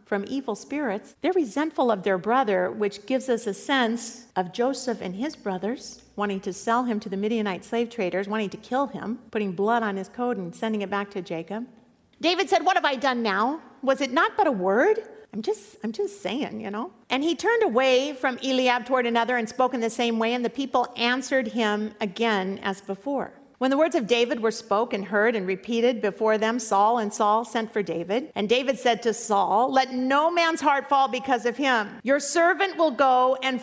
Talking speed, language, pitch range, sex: 215 wpm, English, 220-315 Hz, female